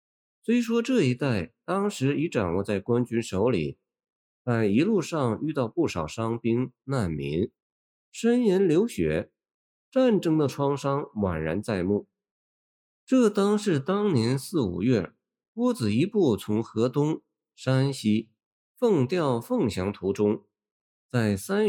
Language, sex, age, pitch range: Chinese, male, 50-69, 105-170 Hz